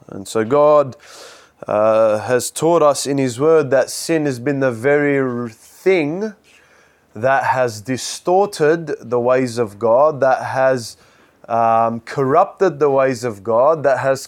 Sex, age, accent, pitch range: male, 20-39, Australian, 115-150 Hz